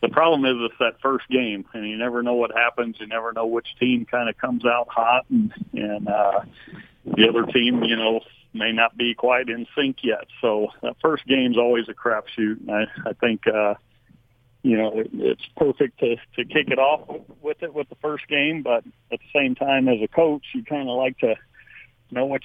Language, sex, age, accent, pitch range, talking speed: English, male, 50-69, American, 120-140 Hz, 215 wpm